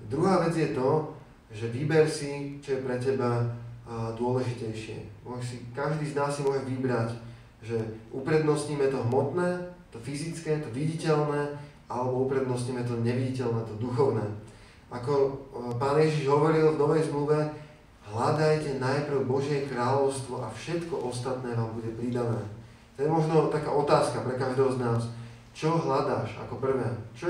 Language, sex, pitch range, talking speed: Slovak, male, 120-145 Hz, 140 wpm